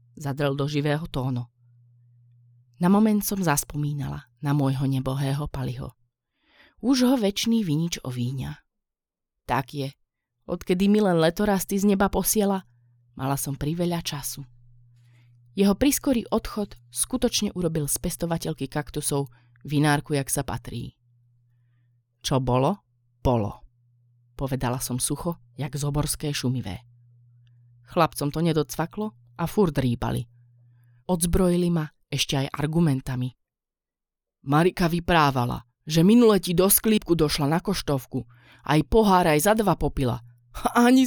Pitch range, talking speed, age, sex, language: 120-175 Hz, 115 wpm, 30-49, female, Slovak